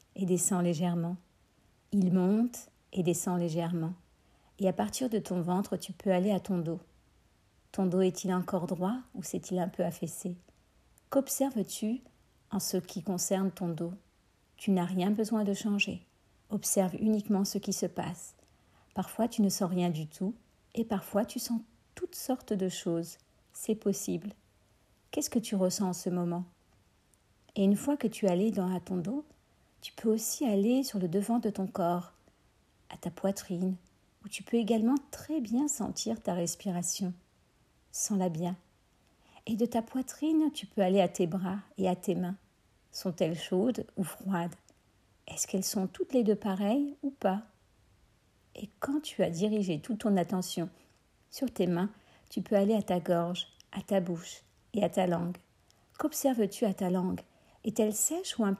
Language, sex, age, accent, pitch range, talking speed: French, female, 50-69, French, 180-220 Hz, 170 wpm